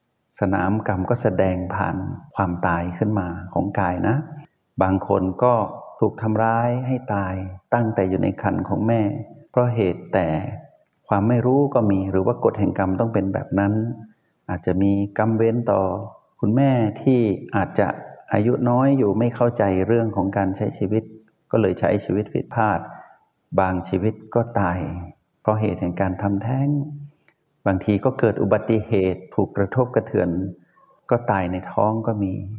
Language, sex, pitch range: Thai, male, 95-115 Hz